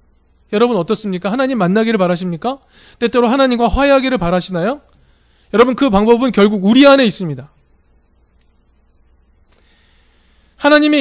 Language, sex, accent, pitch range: Korean, male, native, 150-230 Hz